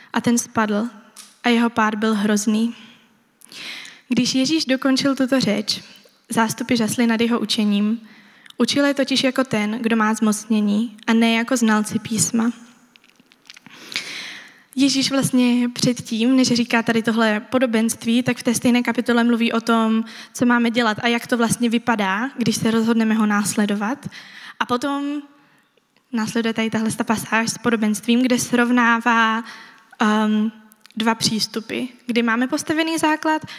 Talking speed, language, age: 140 wpm, Czech, 20-39